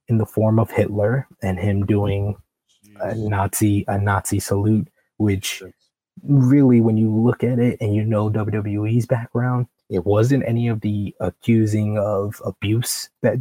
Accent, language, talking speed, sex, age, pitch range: American, English, 150 wpm, male, 20-39, 100-110 Hz